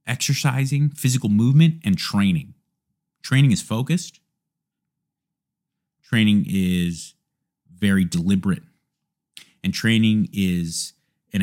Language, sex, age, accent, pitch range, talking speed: English, male, 30-49, American, 100-150 Hz, 85 wpm